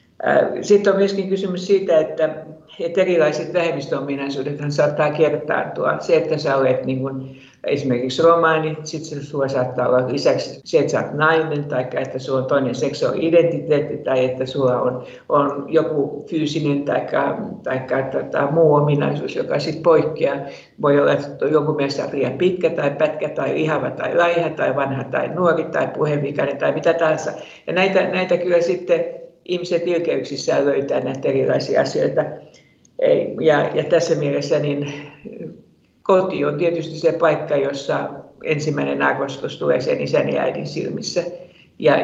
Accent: native